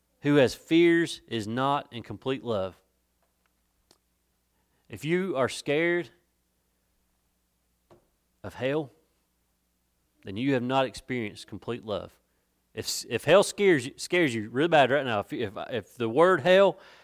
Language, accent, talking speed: English, American, 130 wpm